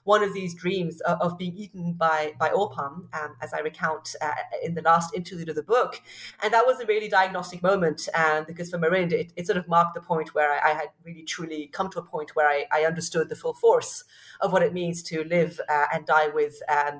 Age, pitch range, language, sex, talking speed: 30-49, 160-210 Hz, English, female, 245 wpm